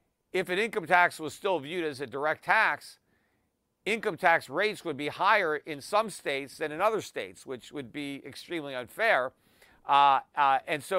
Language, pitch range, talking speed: English, 140-185 Hz, 180 wpm